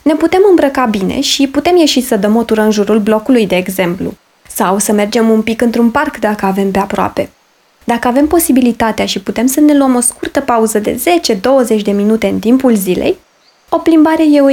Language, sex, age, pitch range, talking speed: Romanian, female, 20-39, 215-280 Hz, 200 wpm